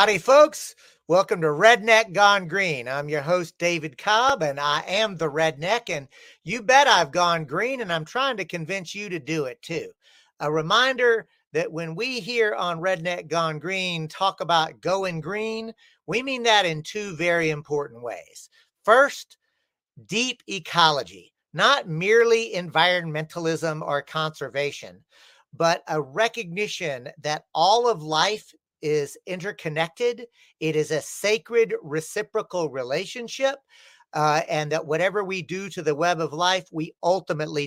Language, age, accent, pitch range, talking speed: English, 50-69, American, 160-230 Hz, 145 wpm